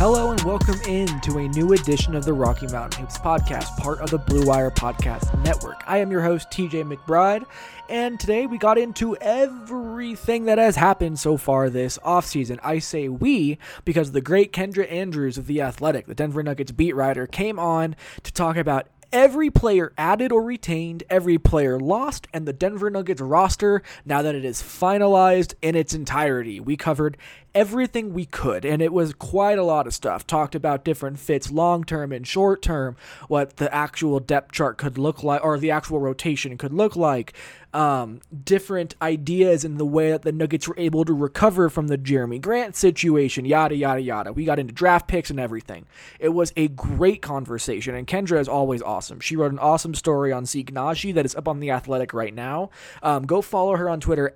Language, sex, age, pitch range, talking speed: English, male, 20-39, 140-185 Hz, 200 wpm